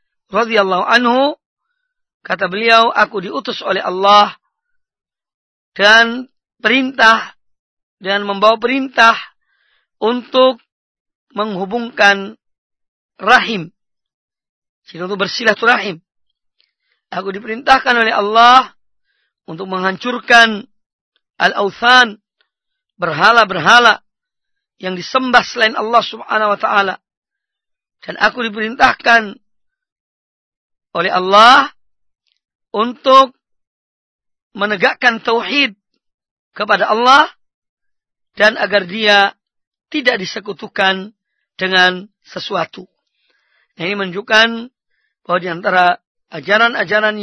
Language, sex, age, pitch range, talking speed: Malay, female, 40-59, 200-250 Hz, 75 wpm